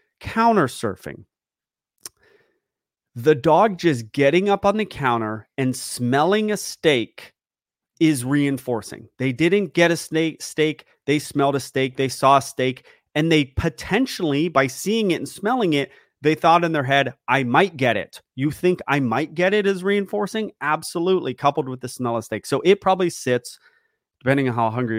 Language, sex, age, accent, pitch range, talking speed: English, male, 30-49, American, 125-175 Hz, 170 wpm